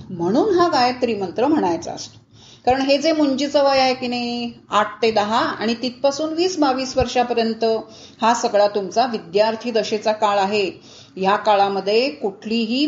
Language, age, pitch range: Marathi, 30-49, 210-285 Hz